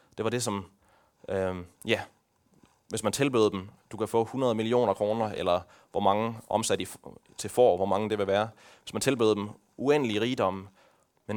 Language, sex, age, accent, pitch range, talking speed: Danish, male, 30-49, native, 100-125 Hz, 190 wpm